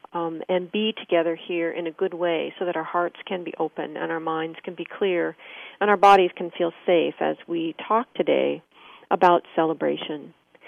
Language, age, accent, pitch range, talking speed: English, 40-59, American, 165-210 Hz, 190 wpm